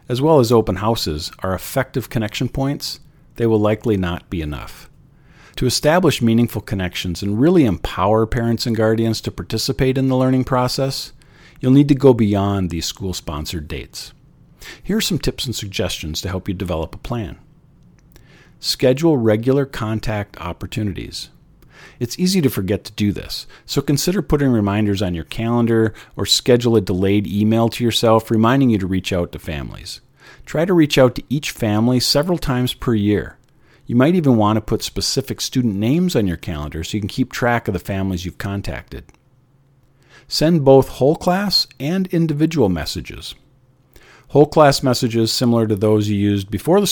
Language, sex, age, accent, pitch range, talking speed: English, male, 50-69, American, 100-135 Hz, 170 wpm